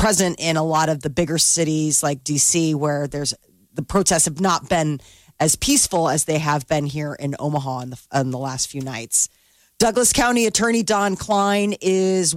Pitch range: 155-185 Hz